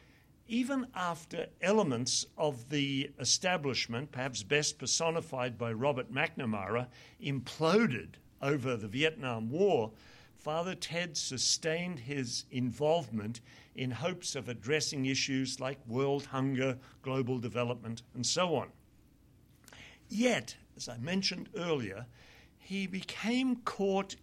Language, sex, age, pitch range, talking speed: English, male, 60-79, 125-165 Hz, 105 wpm